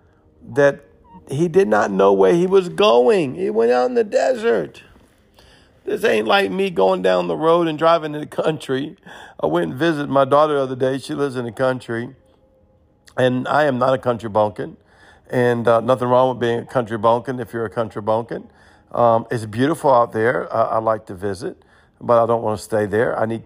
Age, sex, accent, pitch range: 50-69, male, American, 105-130 Hz